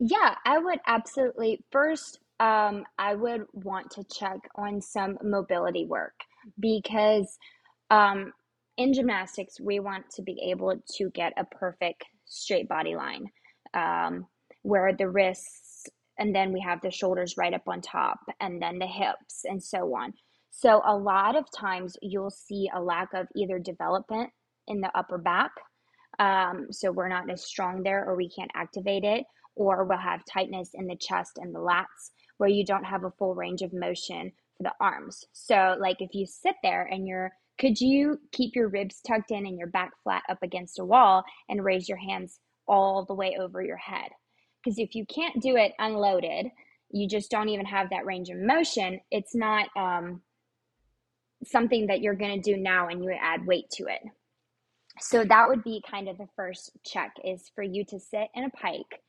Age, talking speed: 20-39, 185 wpm